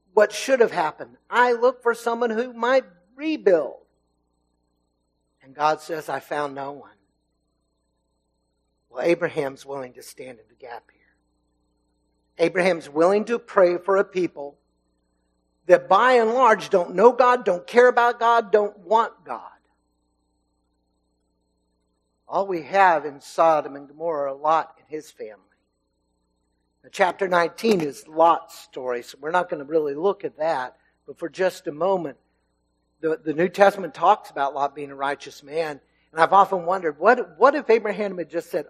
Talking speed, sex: 160 wpm, male